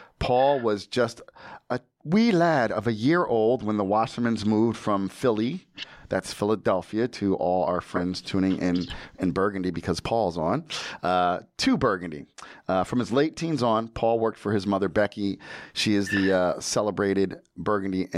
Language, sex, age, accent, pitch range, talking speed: English, male, 40-59, American, 95-120 Hz, 165 wpm